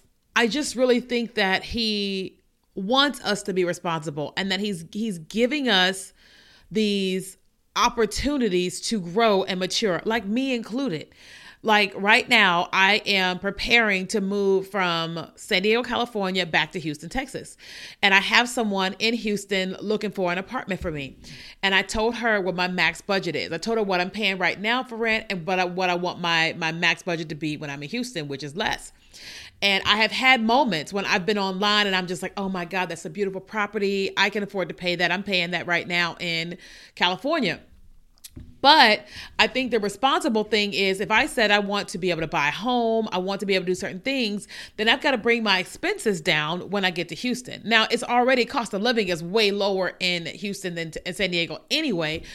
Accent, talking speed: American, 205 wpm